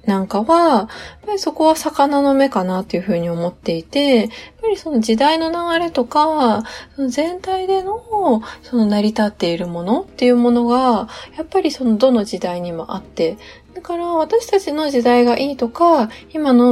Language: Japanese